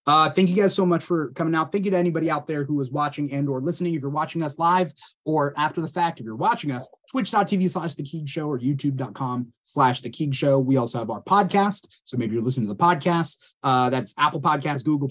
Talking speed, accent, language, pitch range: 230 wpm, American, English, 130-180 Hz